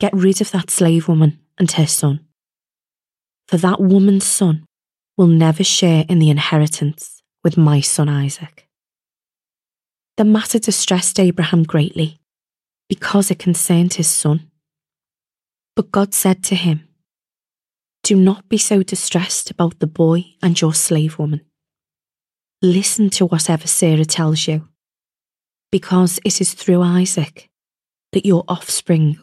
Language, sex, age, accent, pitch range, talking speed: English, female, 20-39, British, 155-190 Hz, 130 wpm